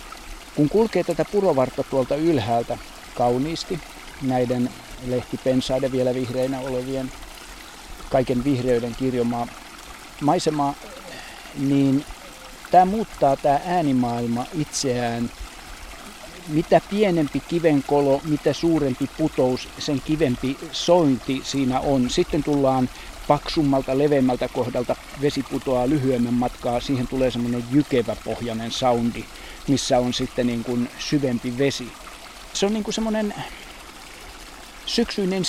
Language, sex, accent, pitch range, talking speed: Finnish, male, native, 125-145 Hz, 100 wpm